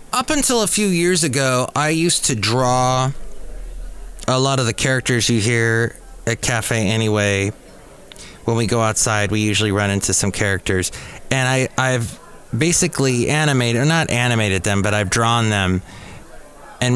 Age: 30-49